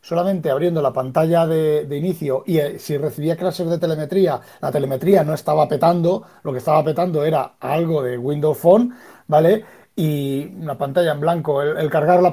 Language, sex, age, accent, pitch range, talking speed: Spanish, male, 30-49, Spanish, 155-195 Hz, 180 wpm